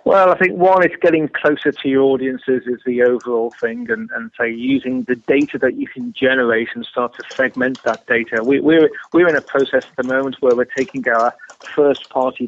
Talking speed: 215 wpm